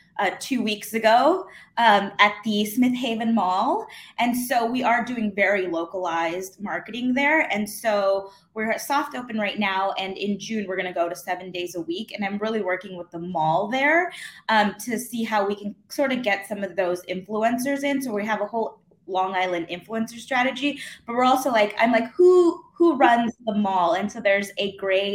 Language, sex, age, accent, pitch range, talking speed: English, female, 20-39, American, 180-235 Hz, 205 wpm